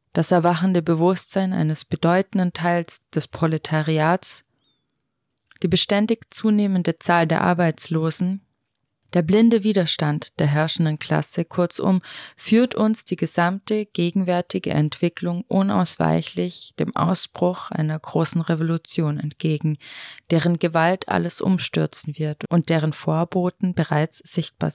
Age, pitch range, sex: 20-39, 155-185 Hz, female